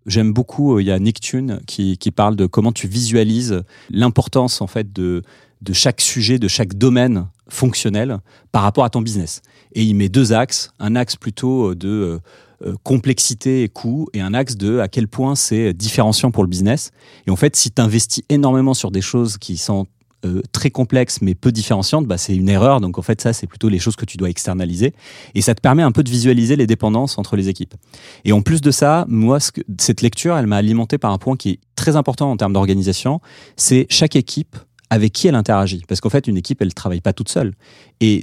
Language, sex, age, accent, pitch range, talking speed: French, male, 30-49, French, 100-130 Hz, 220 wpm